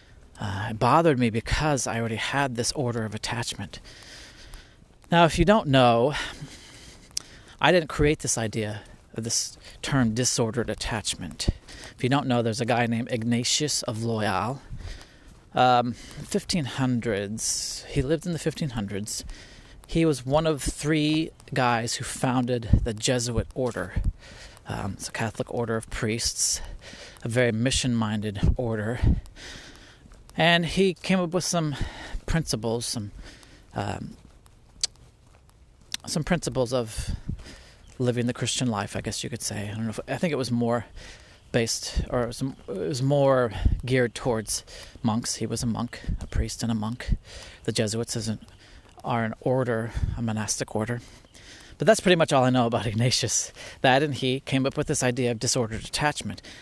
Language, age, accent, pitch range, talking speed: English, 30-49, American, 110-135 Hz, 155 wpm